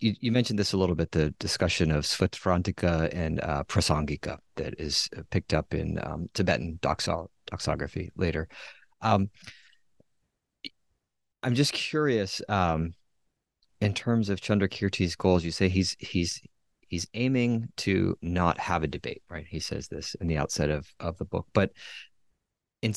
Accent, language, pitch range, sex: American, English, 85-105 Hz, male